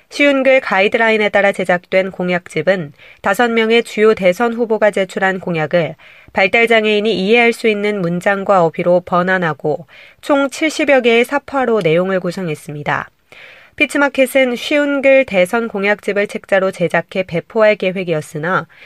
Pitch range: 180-235 Hz